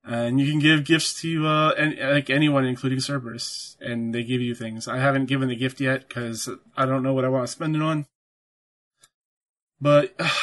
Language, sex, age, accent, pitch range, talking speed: English, male, 20-39, American, 130-155 Hz, 205 wpm